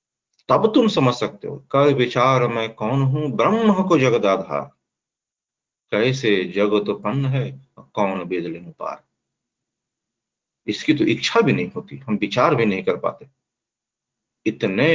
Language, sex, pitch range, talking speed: Hindi, male, 105-140 Hz, 130 wpm